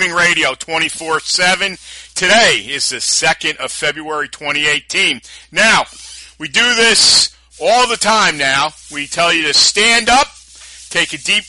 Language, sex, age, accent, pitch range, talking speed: English, male, 50-69, American, 145-175 Hz, 135 wpm